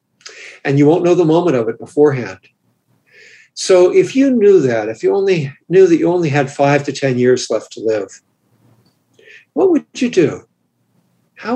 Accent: American